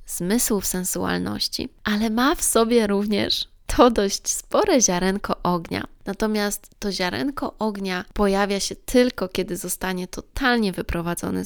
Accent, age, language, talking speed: native, 20-39, Polish, 125 wpm